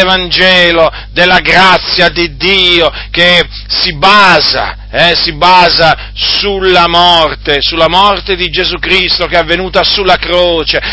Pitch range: 150-185 Hz